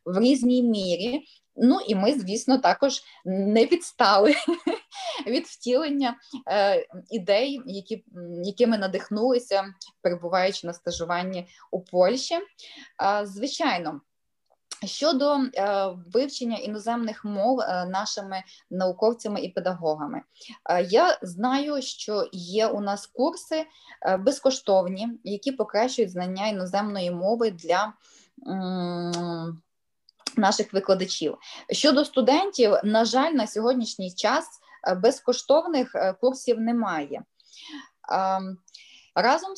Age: 20-39